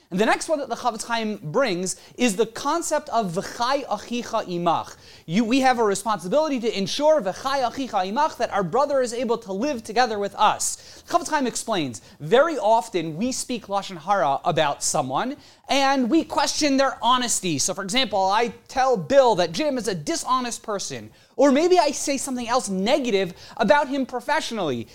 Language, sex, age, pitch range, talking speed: English, male, 30-49, 215-275 Hz, 175 wpm